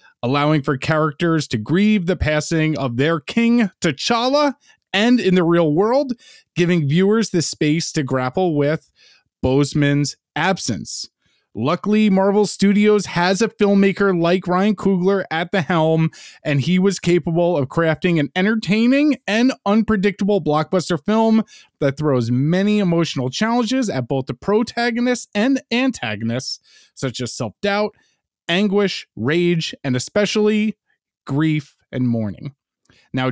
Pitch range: 150-210 Hz